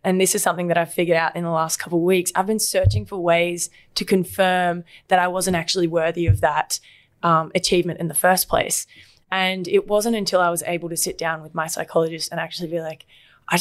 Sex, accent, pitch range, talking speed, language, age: female, Australian, 170-185 Hz, 230 wpm, English, 20-39